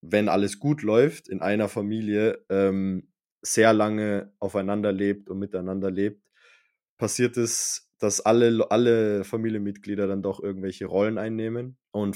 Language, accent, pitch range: German, German, 100-120 Hz